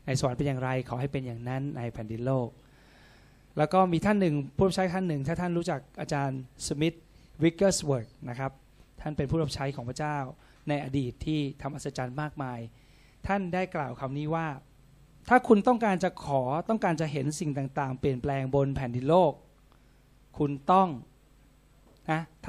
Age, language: 20-39, Thai